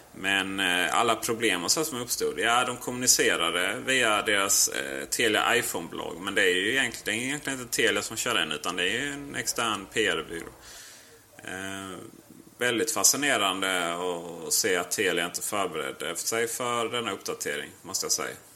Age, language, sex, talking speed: 30-49, Swedish, male, 160 wpm